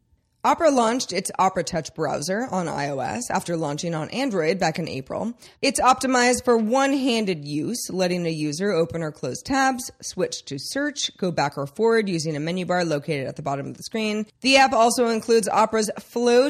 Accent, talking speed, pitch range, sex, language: American, 185 wpm, 175-245 Hz, female, English